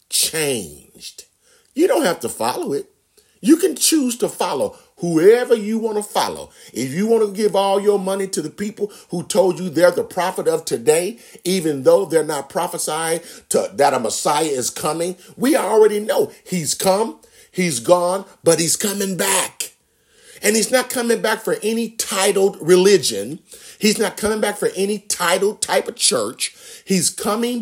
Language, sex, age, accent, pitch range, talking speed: English, male, 50-69, American, 170-230 Hz, 170 wpm